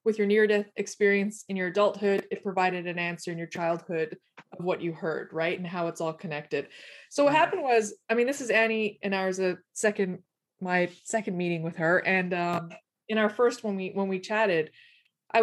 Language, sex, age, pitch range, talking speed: English, female, 20-39, 180-225 Hz, 210 wpm